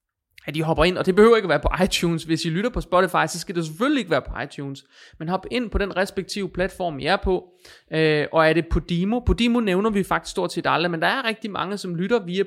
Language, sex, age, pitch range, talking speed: Danish, male, 30-49, 155-200 Hz, 265 wpm